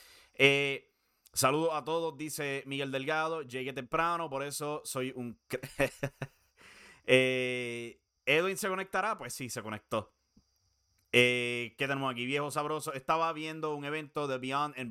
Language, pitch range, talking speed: English, 125-160 Hz, 135 wpm